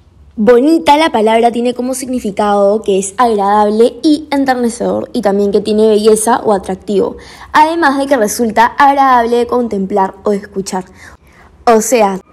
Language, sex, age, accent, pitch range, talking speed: Spanish, female, 10-29, Argentinian, 200-245 Hz, 145 wpm